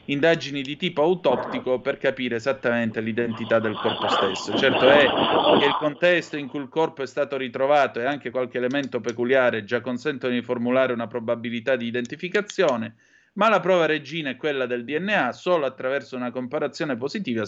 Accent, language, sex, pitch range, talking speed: native, Italian, male, 115-140 Hz, 170 wpm